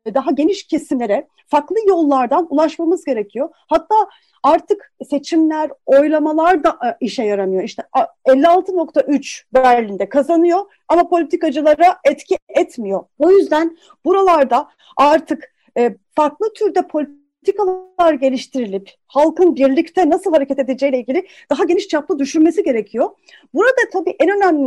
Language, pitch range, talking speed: Turkish, 260-340 Hz, 110 wpm